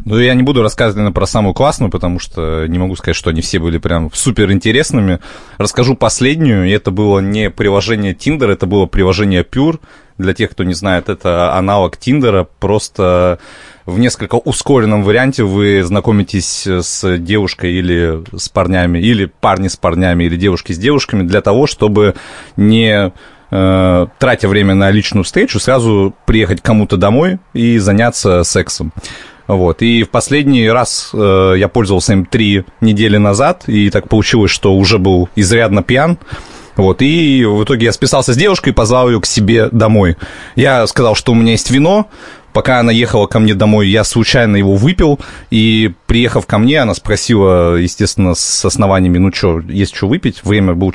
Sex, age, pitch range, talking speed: male, 30-49, 95-115 Hz, 170 wpm